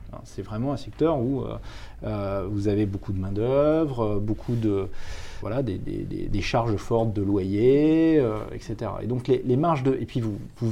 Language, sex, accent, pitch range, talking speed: French, male, French, 110-140 Hz, 185 wpm